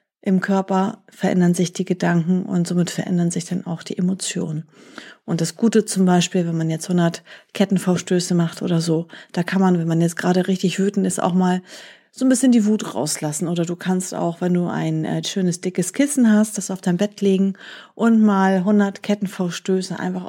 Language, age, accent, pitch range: German, 40-59, German, 175-205 Hz